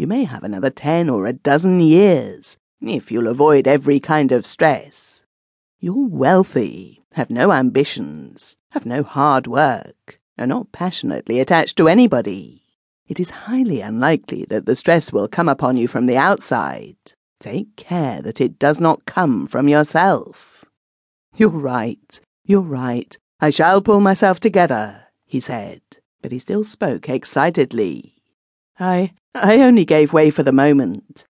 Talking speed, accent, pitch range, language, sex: 150 wpm, British, 125-185 Hz, English, female